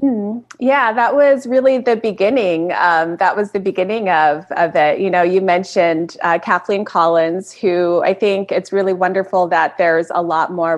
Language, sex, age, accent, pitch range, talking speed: English, female, 30-49, American, 160-195 Hz, 185 wpm